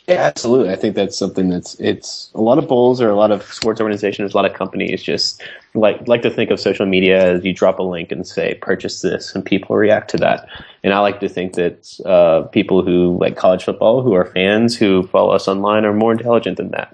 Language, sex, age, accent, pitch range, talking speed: English, male, 20-39, American, 95-110 Hz, 240 wpm